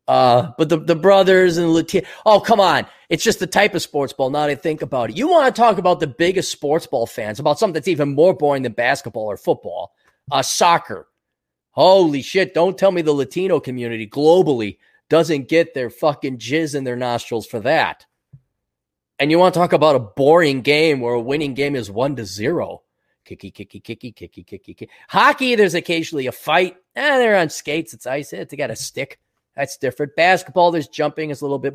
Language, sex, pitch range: English, male, 135-190 Hz